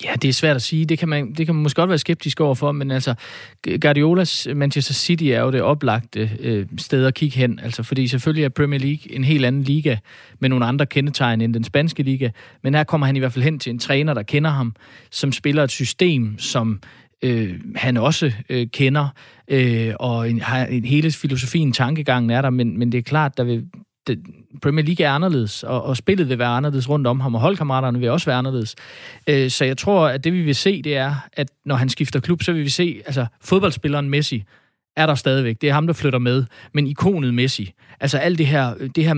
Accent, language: native, Danish